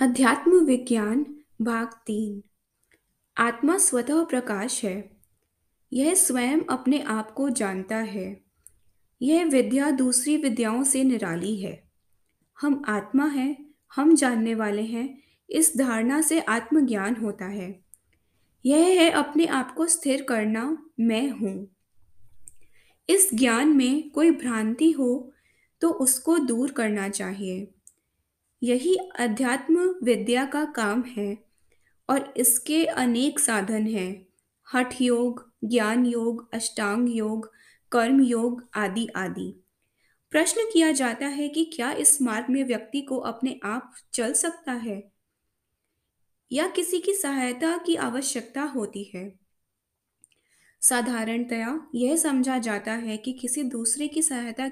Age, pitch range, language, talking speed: 20-39, 220-285 Hz, Hindi, 120 wpm